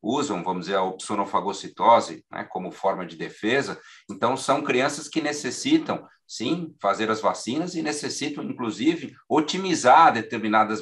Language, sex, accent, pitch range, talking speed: Portuguese, male, Brazilian, 105-130 Hz, 135 wpm